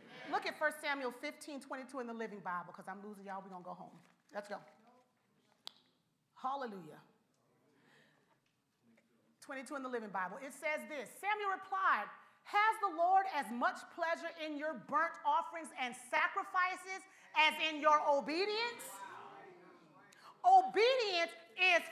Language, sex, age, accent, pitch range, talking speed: English, female, 40-59, American, 250-380 Hz, 135 wpm